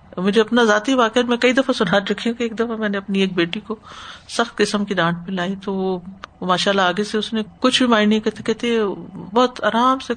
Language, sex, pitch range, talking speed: Urdu, female, 190-255 Hz, 235 wpm